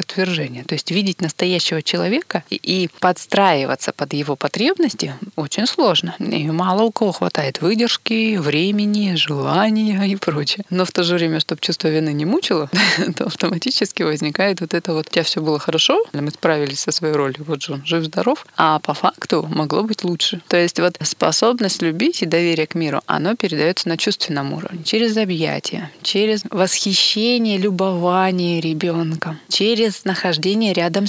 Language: Russian